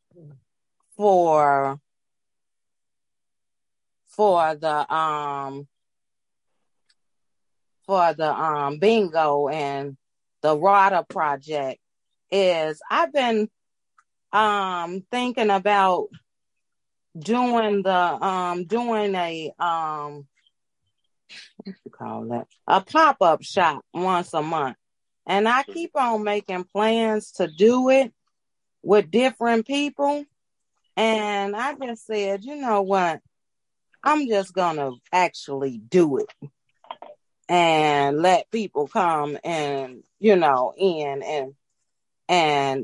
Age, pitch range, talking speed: 30-49, 145-205 Hz, 100 wpm